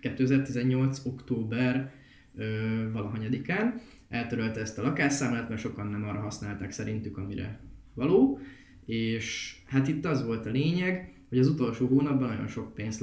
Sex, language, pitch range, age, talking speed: male, Hungarian, 115-140 Hz, 20-39, 140 wpm